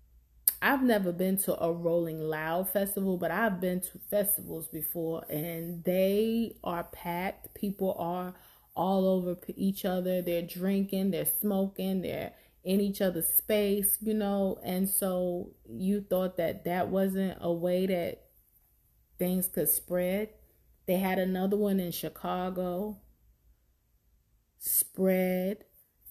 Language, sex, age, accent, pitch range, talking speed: English, female, 20-39, American, 170-195 Hz, 125 wpm